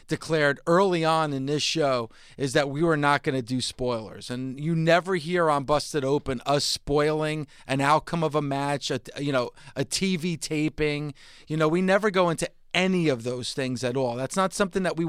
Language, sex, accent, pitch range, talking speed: English, male, American, 140-170 Hz, 205 wpm